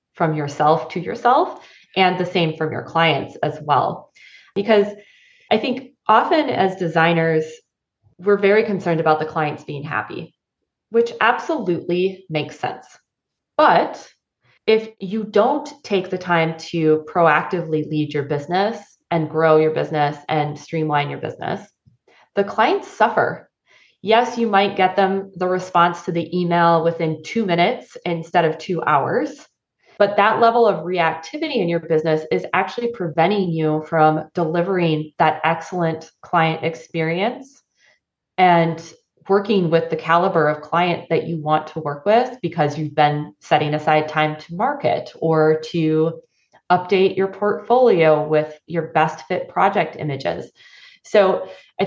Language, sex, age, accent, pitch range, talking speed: English, female, 20-39, American, 155-200 Hz, 140 wpm